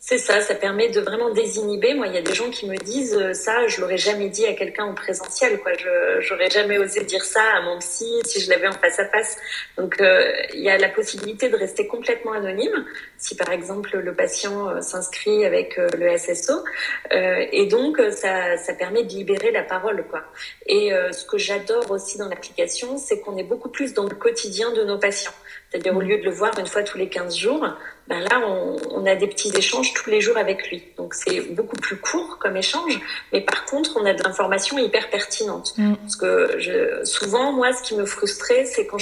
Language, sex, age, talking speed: French, female, 30-49, 220 wpm